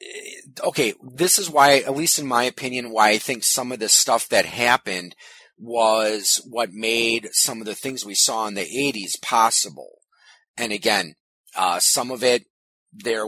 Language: English